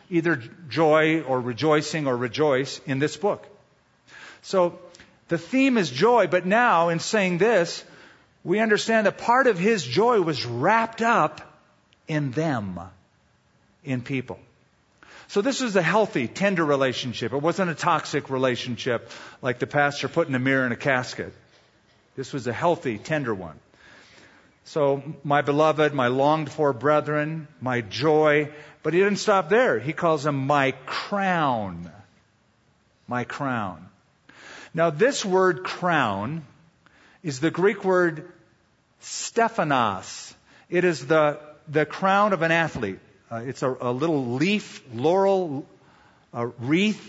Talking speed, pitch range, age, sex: 135 wpm, 135-180 Hz, 50-69, male